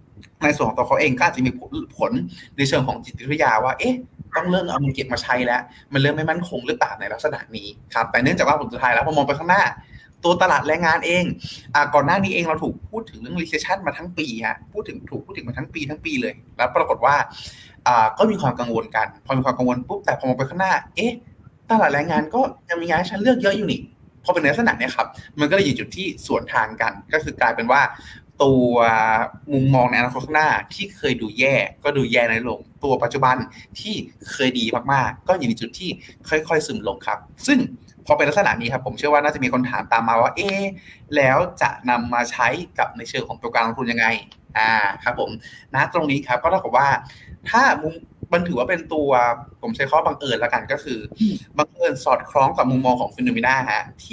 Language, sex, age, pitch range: Thai, male, 20-39, 120-165 Hz